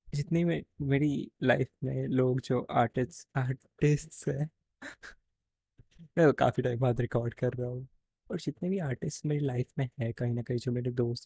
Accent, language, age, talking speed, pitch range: native, Hindi, 20-39, 175 wpm, 120-160 Hz